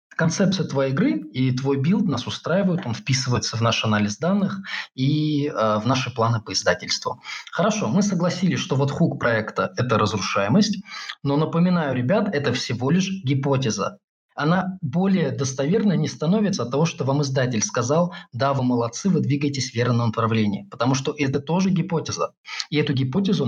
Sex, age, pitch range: male, 20-39, 125-180 Hz